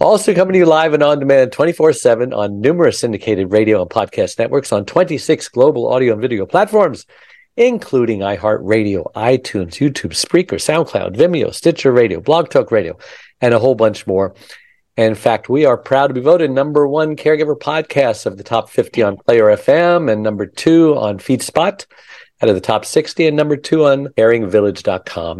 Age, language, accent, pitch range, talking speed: 50-69, English, American, 110-170 Hz, 170 wpm